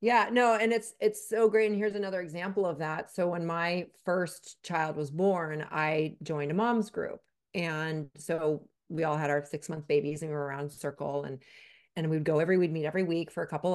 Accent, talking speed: American, 225 wpm